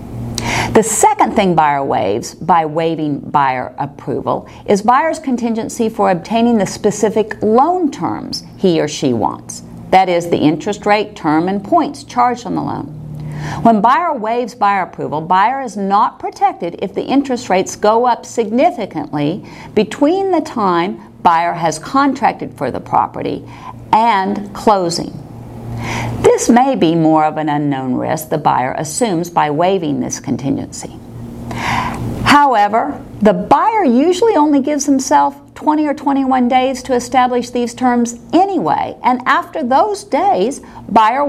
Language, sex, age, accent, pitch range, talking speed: English, female, 50-69, American, 150-245 Hz, 140 wpm